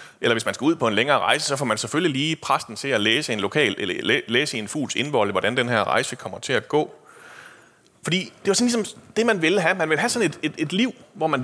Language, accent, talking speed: Danish, native, 260 wpm